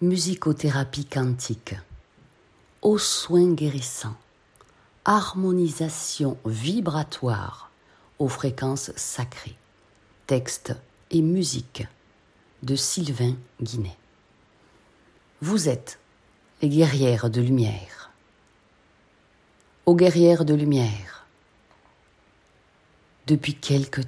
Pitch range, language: 110-150 Hz, French